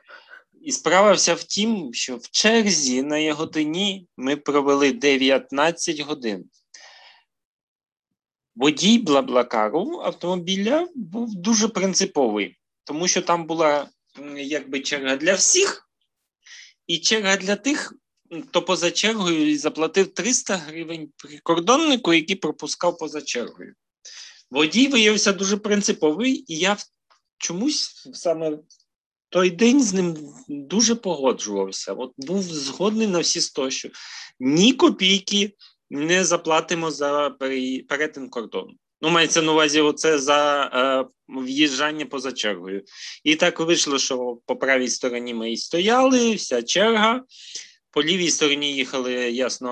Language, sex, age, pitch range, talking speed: Ukrainian, male, 30-49, 140-200 Hz, 120 wpm